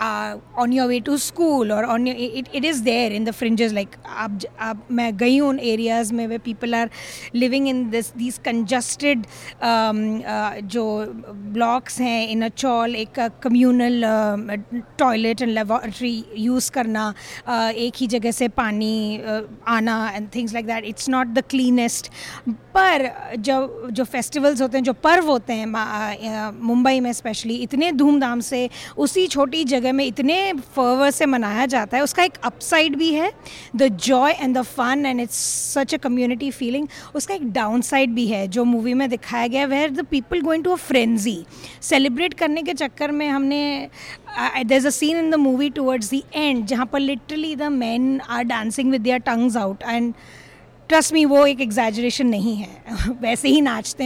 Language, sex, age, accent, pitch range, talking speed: Hindi, female, 20-39, native, 230-275 Hz, 170 wpm